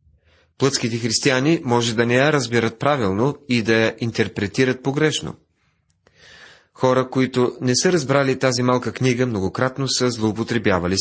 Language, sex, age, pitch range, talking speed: Bulgarian, male, 40-59, 105-135 Hz, 130 wpm